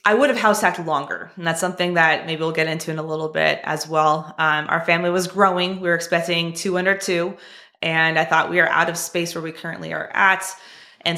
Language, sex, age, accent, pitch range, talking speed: English, female, 20-39, American, 155-185 Hz, 240 wpm